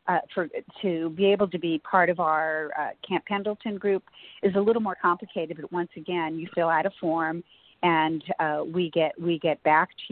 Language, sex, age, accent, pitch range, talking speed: English, female, 40-59, American, 160-200 Hz, 210 wpm